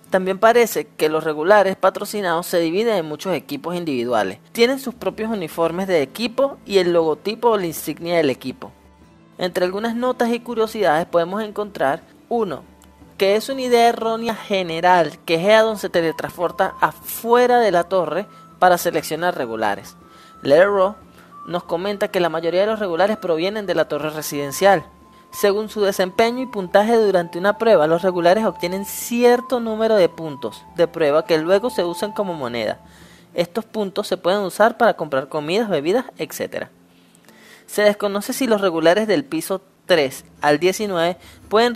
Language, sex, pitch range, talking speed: Spanish, male, 165-215 Hz, 155 wpm